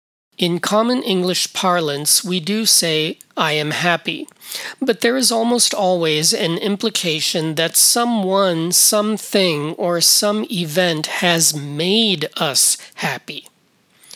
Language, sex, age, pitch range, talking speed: English, male, 40-59, 160-205 Hz, 115 wpm